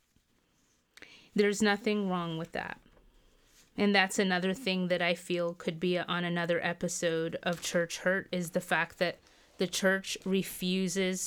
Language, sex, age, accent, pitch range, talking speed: English, female, 20-39, American, 175-210 Hz, 145 wpm